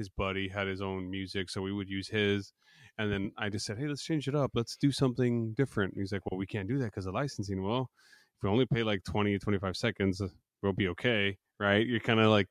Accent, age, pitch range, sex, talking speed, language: American, 20-39, 100-115 Hz, male, 260 wpm, English